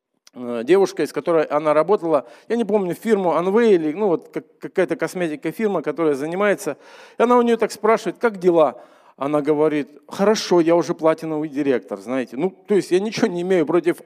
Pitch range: 160-215 Hz